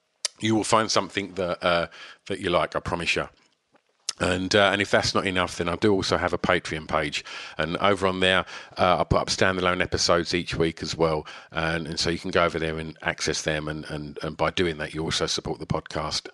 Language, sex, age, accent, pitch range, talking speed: English, male, 50-69, British, 95-130 Hz, 230 wpm